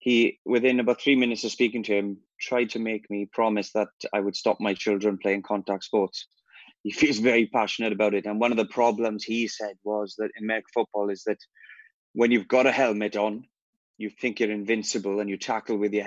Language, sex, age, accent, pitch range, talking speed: English, male, 20-39, British, 105-120 Hz, 215 wpm